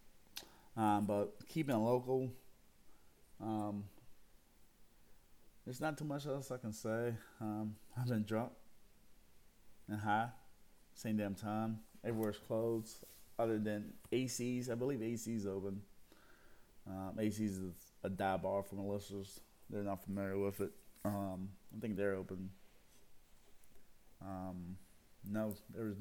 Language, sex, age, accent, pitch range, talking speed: English, male, 20-39, American, 100-115 Hz, 120 wpm